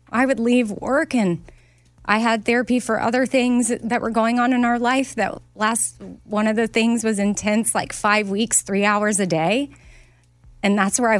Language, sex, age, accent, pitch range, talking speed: English, female, 30-49, American, 175-220 Hz, 200 wpm